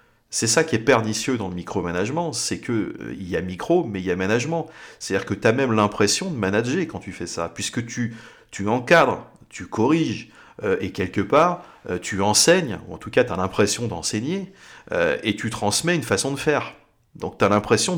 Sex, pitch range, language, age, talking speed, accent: male, 100-145 Hz, French, 40-59, 215 wpm, French